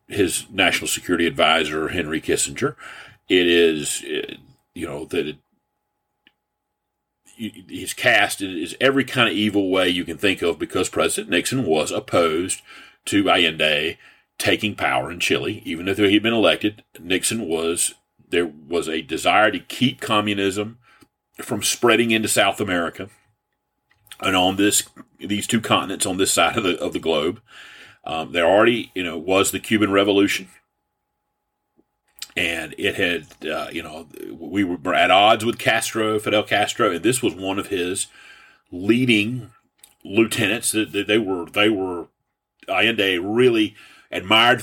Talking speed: 145 wpm